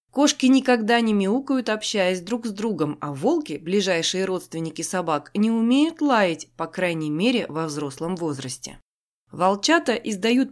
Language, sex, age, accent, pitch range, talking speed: Russian, female, 20-39, native, 180-240 Hz, 135 wpm